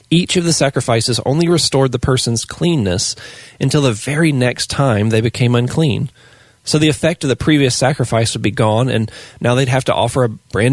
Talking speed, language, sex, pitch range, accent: 195 wpm, English, male, 115-140 Hz, American